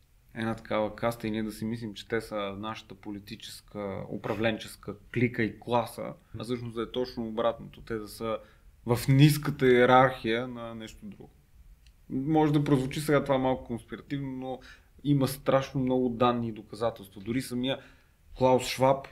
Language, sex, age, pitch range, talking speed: Bulgarian, male, 30-49, 115-145 Hz, 155 wpm